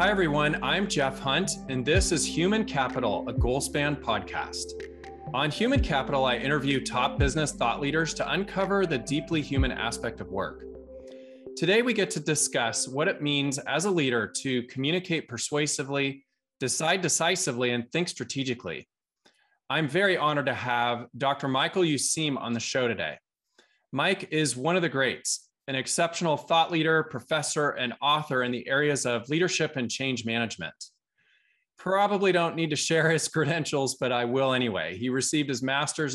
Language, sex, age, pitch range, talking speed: English, male, 20-39, 125-160 Hz, 160 wpm